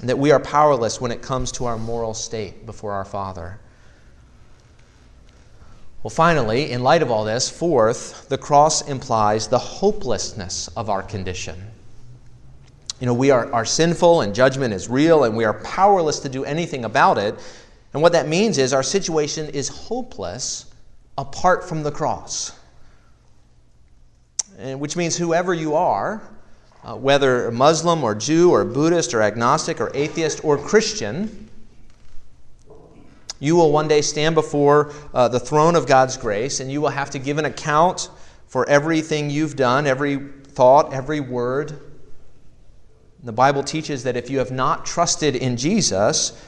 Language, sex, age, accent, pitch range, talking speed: English, male, 40-59, American, 115-150 Hz, 155 wpm